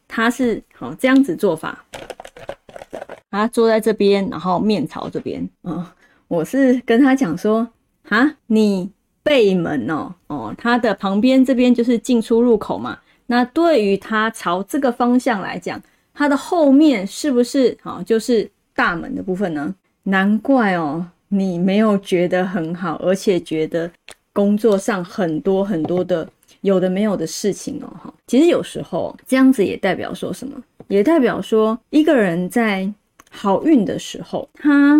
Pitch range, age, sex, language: 195-270 Hz, 20-39, female, Chinese